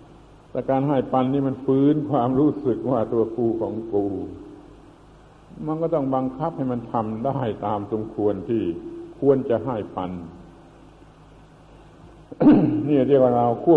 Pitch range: 110-135 Hz